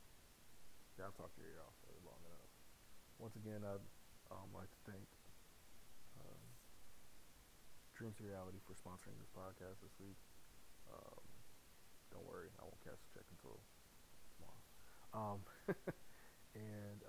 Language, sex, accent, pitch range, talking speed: English, male, American, 95-110 Hz, 125 wpm